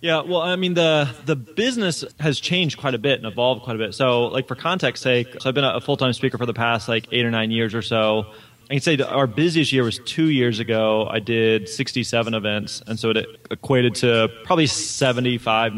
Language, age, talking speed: English, 20-39, 230 wpm